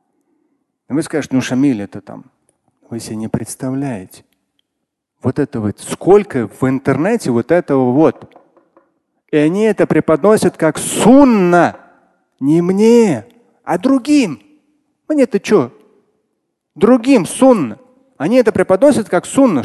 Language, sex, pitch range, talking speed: Russian, male, 145-220 Hz, 120 wpm